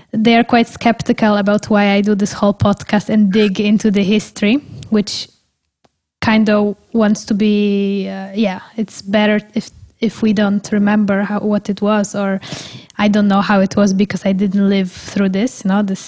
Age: 10-29